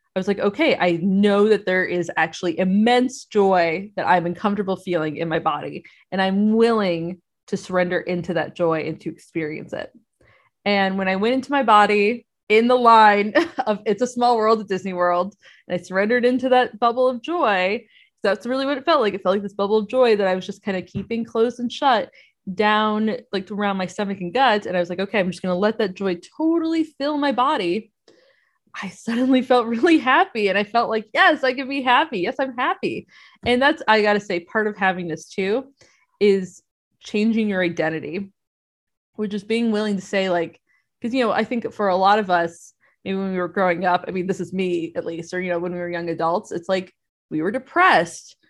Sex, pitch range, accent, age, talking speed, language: female, 185-235 Hz, American, 20-39, 220 wpm, English